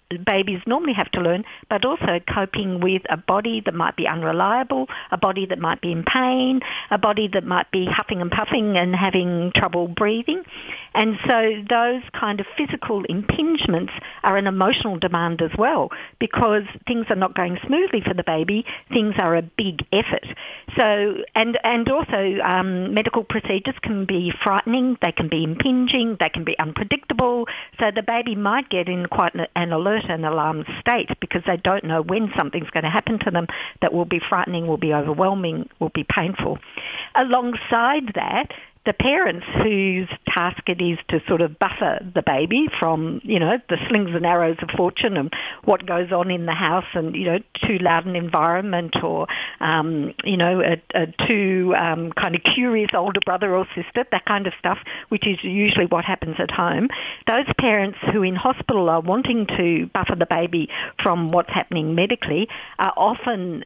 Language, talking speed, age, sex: English, 180 wpm, 50-69, female